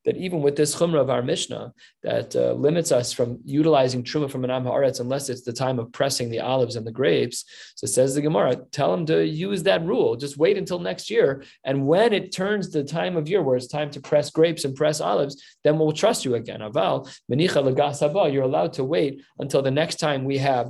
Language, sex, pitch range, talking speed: English, male, 130-160 Hz, 225 wpm